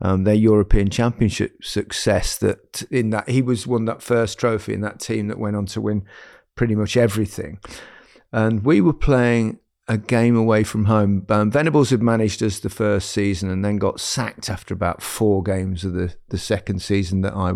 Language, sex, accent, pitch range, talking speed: English, male, British, 100-125 Hz, 195 wpm